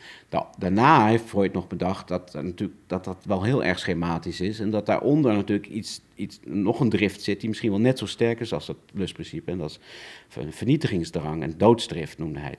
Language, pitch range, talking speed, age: Dutch, 90-115 Hz, 210 wpm, 50-69